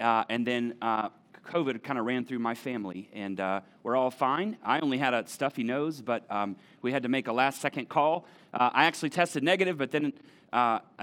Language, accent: English, American